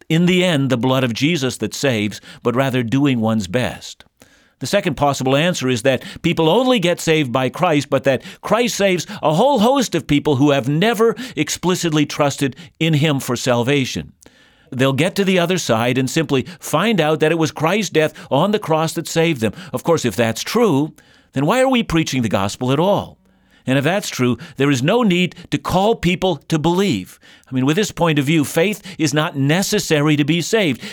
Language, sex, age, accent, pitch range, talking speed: English, male, 50-69, American, 130-175 Hz, 205 wpm